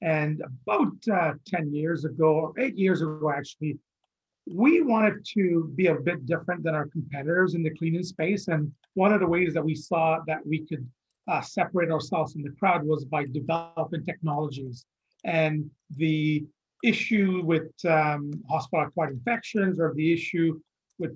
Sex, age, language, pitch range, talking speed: male, 40-59, English, 150-180 Hz, 160 wpm